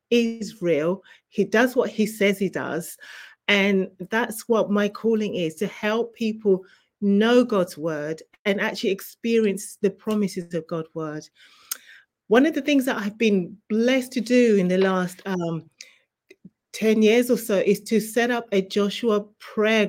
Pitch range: 185-230 Hz